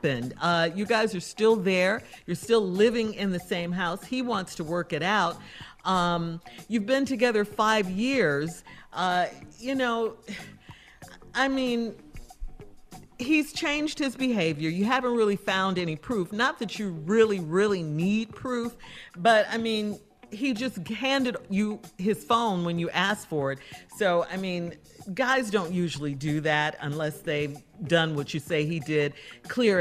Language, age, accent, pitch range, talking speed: English, 50-69, American, 170-230 Hz, 155 wpm